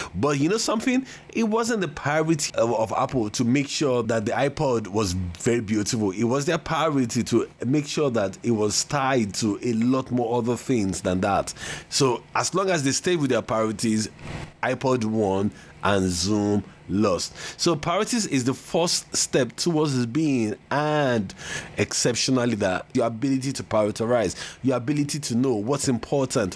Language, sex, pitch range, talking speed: English, male, 115-150 Hz, 170 wpm